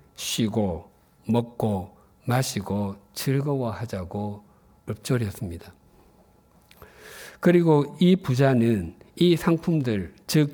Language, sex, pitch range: Korean, male, 105-150 Hz